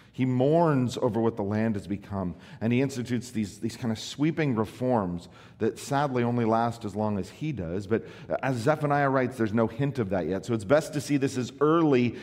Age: 40-59